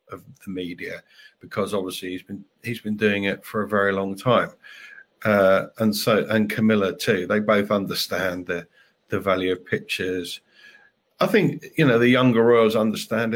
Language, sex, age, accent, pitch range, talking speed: English, male, 50-69, British, 105-145 Hz, 170 wpm